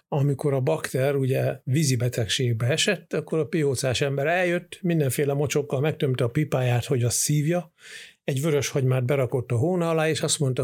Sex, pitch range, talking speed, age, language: male, 130-165 Hz, 165 wpm, 60-79, Hungarian